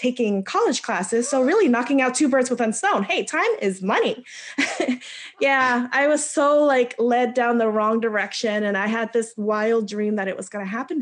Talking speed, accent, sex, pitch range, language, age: 205 wpm, American, female, 185-235 Hz, English, 20-39